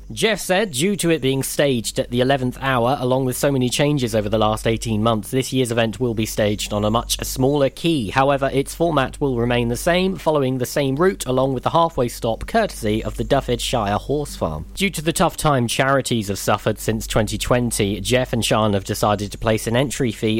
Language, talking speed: English, 220 wpm